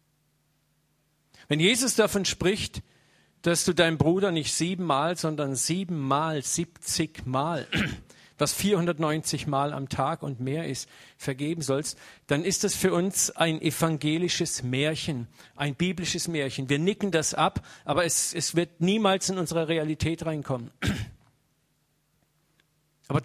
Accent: German